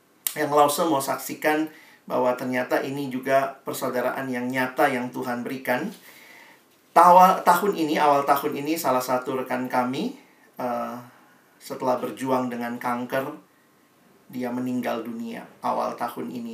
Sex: male